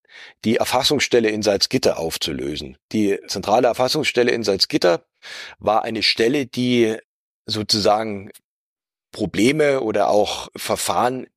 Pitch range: 100-120 Hz